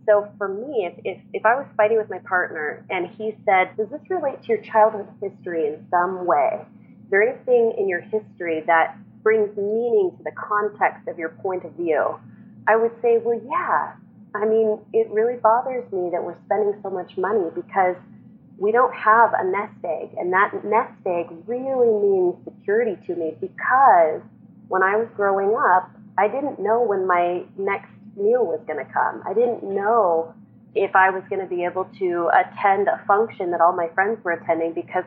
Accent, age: American, 30-49